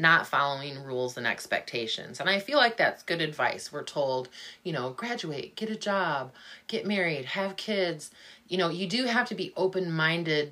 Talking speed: 185 wpm